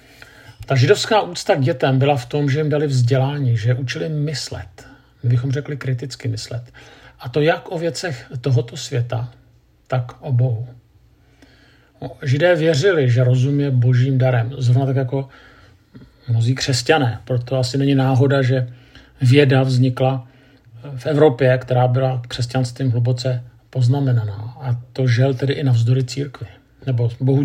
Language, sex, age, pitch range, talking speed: Czech, male, 50-69, 120-135 Hz, 140 wpm